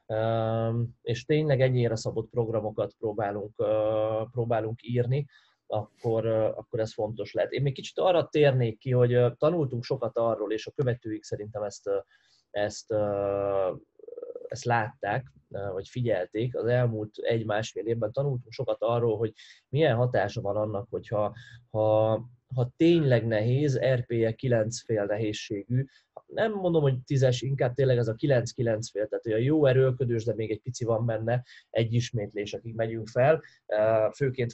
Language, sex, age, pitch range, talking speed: Hungarian, male, 20-39, 110-130 Hz, 130 wpm